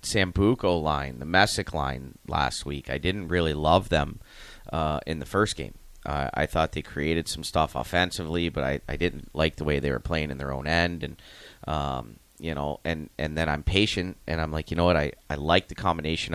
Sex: male